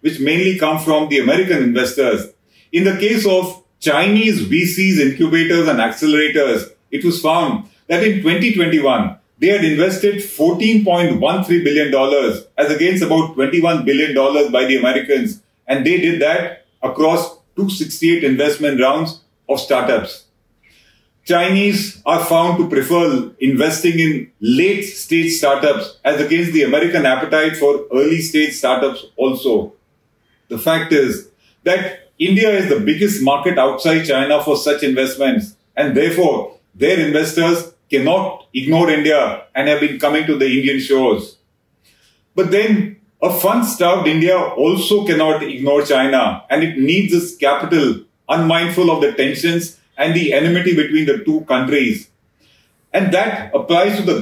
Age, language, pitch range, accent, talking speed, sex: 40-59, English, 145-185 Hz, Indian, 135 wpm, male